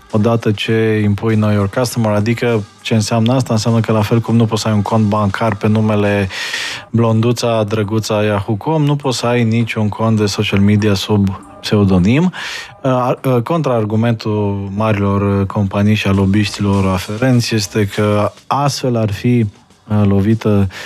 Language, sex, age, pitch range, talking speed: Romanian, male, 20-39, 105-125 Hz, 145 wpm